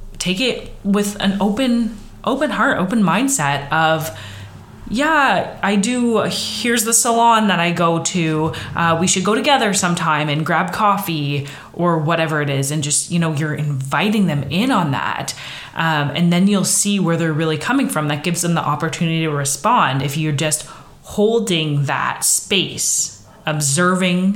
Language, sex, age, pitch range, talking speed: English, female, 20-39, 150-200 Hz, 165 wpm